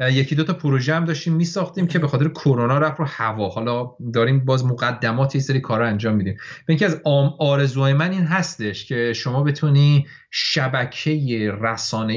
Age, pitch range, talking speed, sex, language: 30-49, 115-155 Hz, 165 wpm, male, Persian